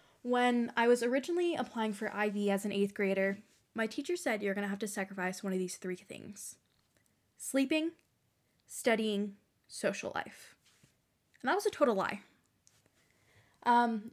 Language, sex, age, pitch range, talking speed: English, female, 10-29, 200-260 Hz, 155 wpm